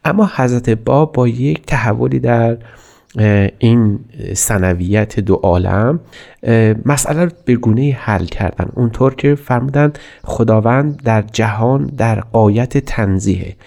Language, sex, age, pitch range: Persian, male, 30-49, 105-135 Hz